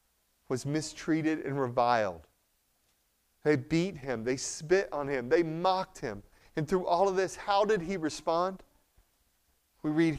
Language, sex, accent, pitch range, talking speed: English, male, American, 125-175 Hz, 145 wpm